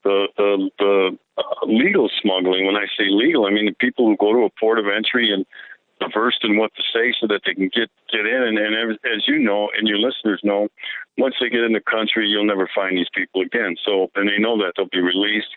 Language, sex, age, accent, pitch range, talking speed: English, male, 50-69, American, 100-110 Hz, 245 wpm